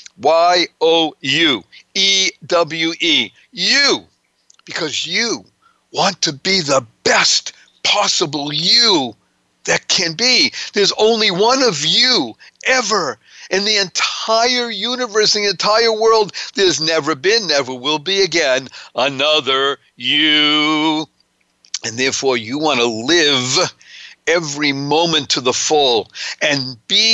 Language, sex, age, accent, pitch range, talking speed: English, male, 50-69, American, 130-190 Hz, 120 wpm